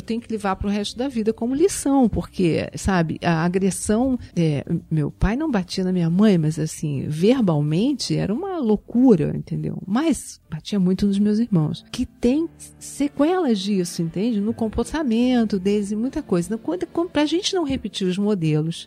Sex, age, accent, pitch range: female, 40-59, Brazilian, 175-245 Hz